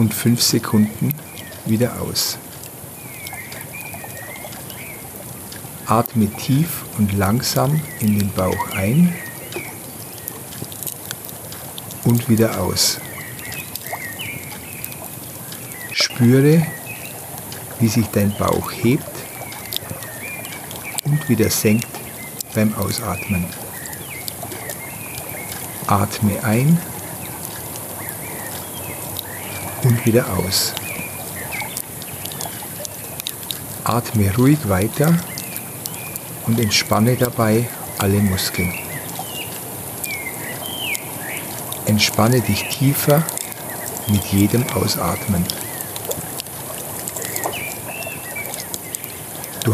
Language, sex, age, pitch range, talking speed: German, male, 50-69, 105-130 Hz, 55 wpm